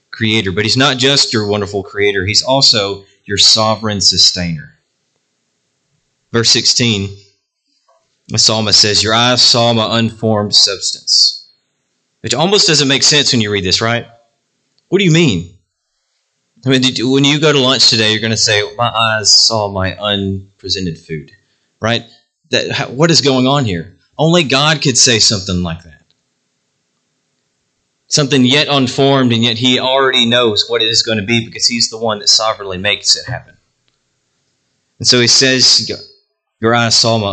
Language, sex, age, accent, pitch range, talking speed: English, male, 30-49, American, 95-130 Hz, 165 wpm